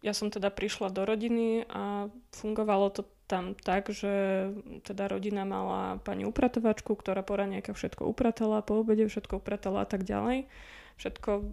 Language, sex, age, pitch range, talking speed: Slovak, female, 20-39, 205-220 Hz, 150 wpm